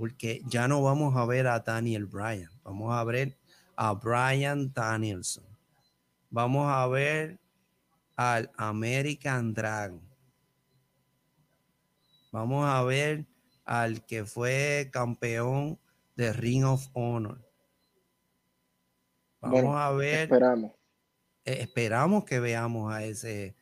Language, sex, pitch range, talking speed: Spanish, male, 100-130 Hz, 100 wpm